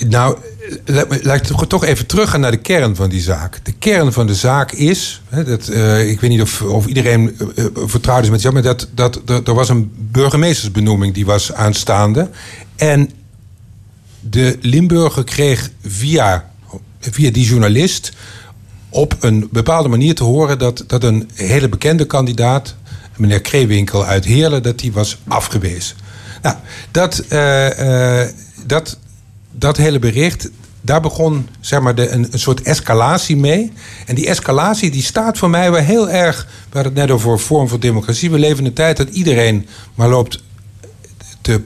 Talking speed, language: 175 wpm, Dutch